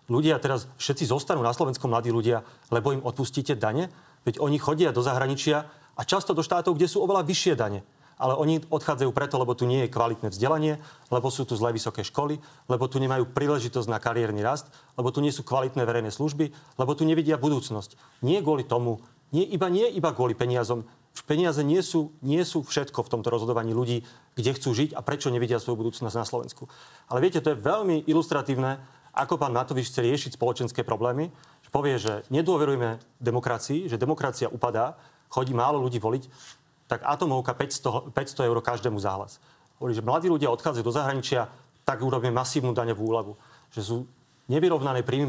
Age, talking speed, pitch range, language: 30-49, 185 wpm, 120-150 Hz, Slovak